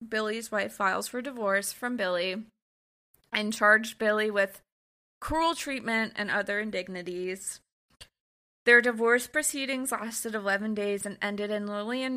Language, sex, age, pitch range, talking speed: English, female, 20-39, 195-225 Hz, 130 wpm